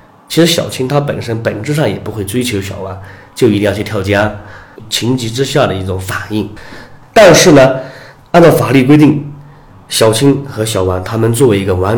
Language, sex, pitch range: Chinese, male, 100-130 Hz